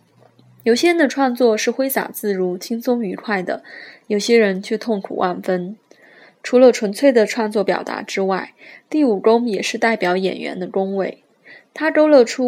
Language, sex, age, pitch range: Chinese, female, 20-39, 205-250 Hz